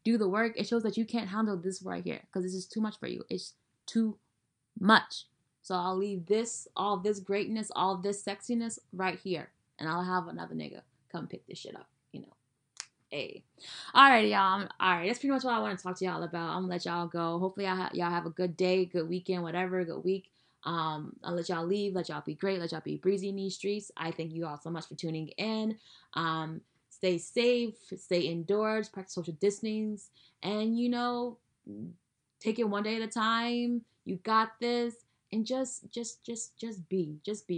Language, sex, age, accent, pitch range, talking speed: English, female, 20-39, American, 180-225 Hz, 210 wpm